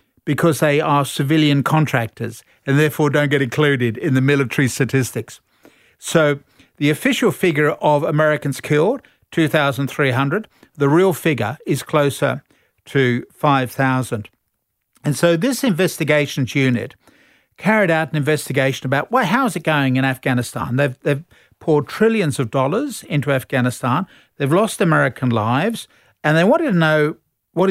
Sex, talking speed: male, 135 wpm